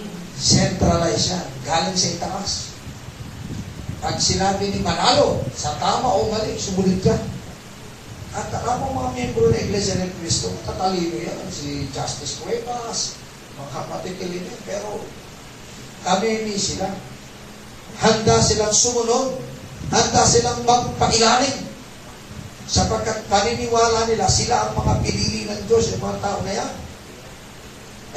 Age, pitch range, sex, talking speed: 40-59, 145-225 Hz, male, 120 wpm